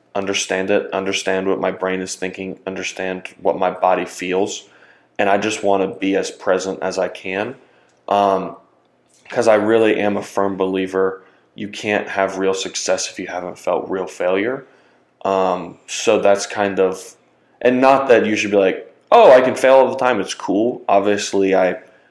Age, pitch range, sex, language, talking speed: 20-39, 95-105 Hz, male, English, 180 wpm